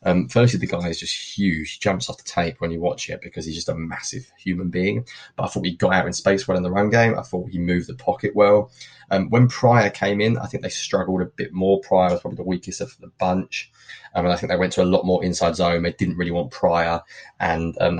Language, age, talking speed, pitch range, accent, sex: English, 20-39, 275 wpm, 85-105 Hz, British, male